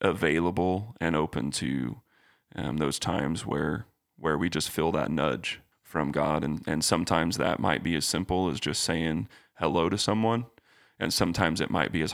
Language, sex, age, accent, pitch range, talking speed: English, male, 30-49, American, 80-95 Hz, 180 wpm